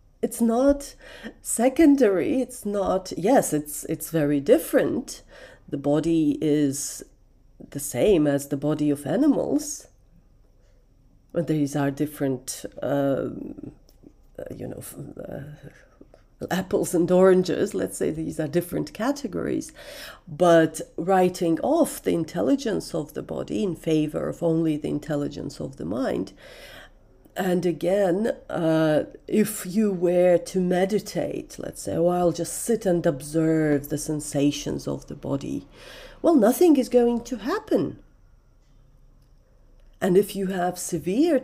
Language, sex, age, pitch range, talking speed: English, female, 40-59, 150-225 Hz, 125 wpm